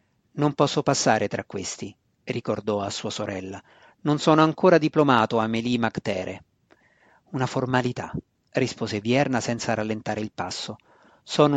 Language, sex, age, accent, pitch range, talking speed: Italian, male, 40-59, native, 110-150 Hz, 125 wpm